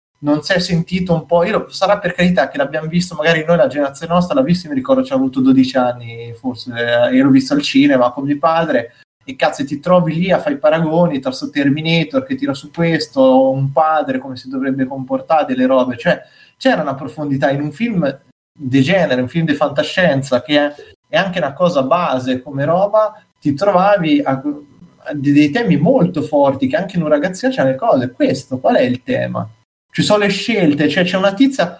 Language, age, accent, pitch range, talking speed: Italian, 20-39, native, 145-210 Hz, 210 wpm